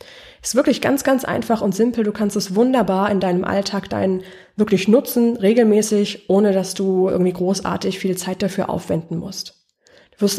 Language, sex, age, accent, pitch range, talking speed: German, female, 20-39, German, 185-225 Hz, 175 wpm